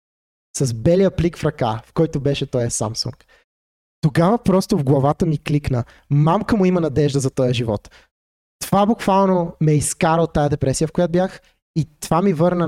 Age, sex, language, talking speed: 20-39, male, Bulgarian, 175 wpm